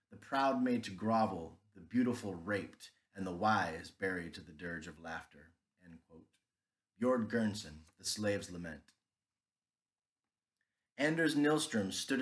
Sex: male